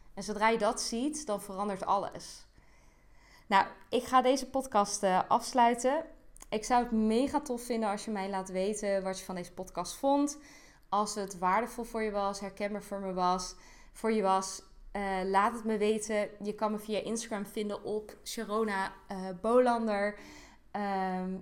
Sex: female